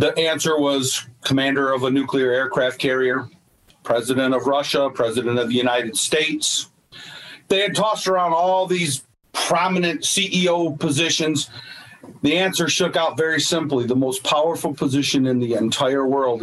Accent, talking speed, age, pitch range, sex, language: American, 145 wpm, 40-59, 120-150 Hz, male, English